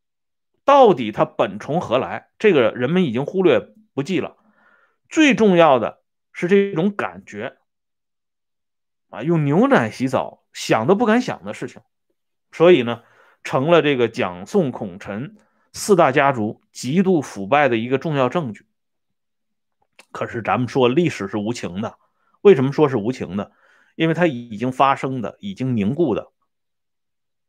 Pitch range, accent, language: 120-185 Hz, Chinese, Swedish